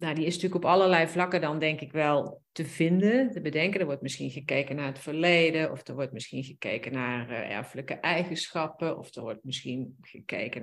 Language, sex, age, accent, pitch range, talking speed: Dutch, female, 40-59, Dutch, 165-200 Hz, 205 wpm